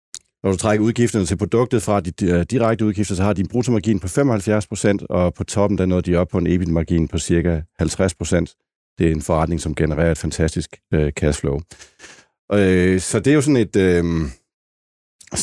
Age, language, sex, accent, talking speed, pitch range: 60-79, Danish, male, native, 185 wpm, 80-100 Hz